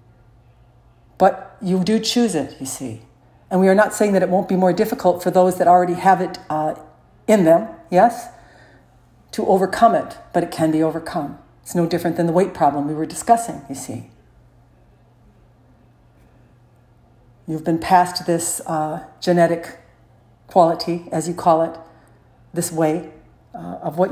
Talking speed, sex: 160 wpm, female